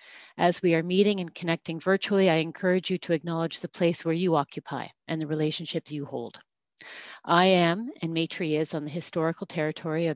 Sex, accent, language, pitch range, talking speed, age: female, American, English, 160-185 Hz, 190 wpm, 40-59